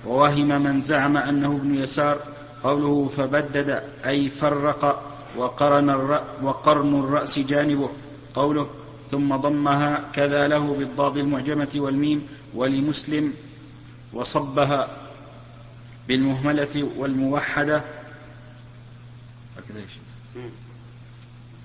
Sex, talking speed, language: male, 70 wpm, Arabic